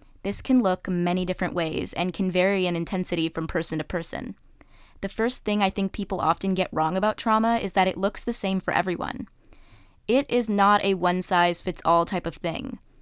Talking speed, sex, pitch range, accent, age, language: 195 wpm, female, 180-205 Hz, American, 20-39, English